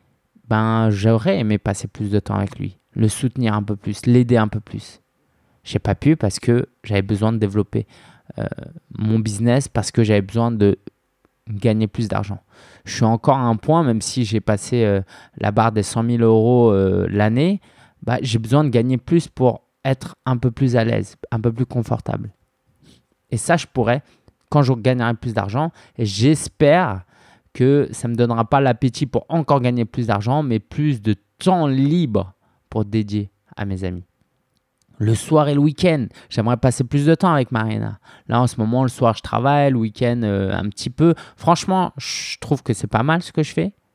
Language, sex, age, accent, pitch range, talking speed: French, male, 20-39, French, 110-140 Hz, 200 wpm